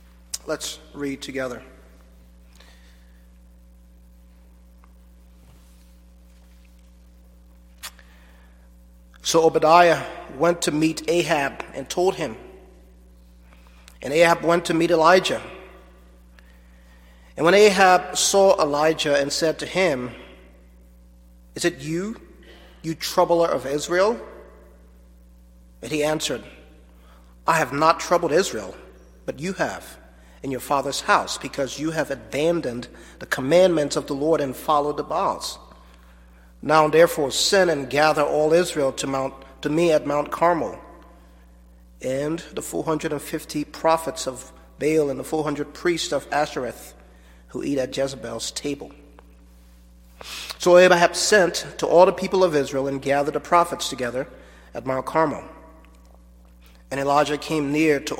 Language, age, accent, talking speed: English, 40-59, American, 125 wpm